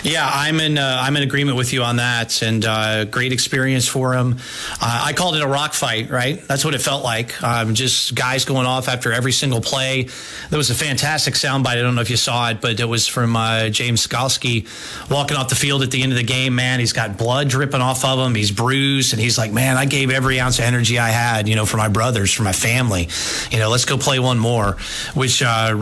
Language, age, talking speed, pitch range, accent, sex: English, 30-49, 250 wpm, 115-145 Hz, American, male